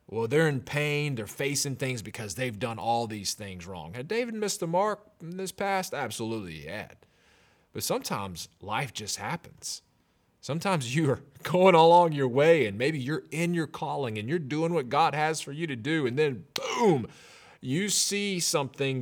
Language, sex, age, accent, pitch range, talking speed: English, male, 30-49, American, 120-165 Hz, 185 wpm